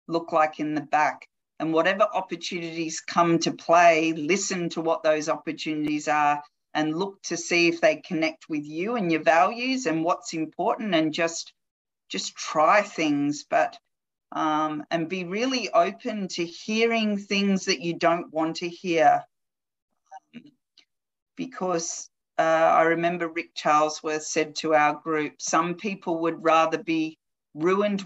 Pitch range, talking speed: 160-190 Hz, 150 wpm